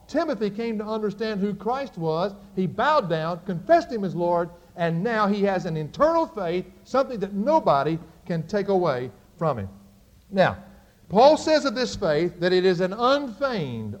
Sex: male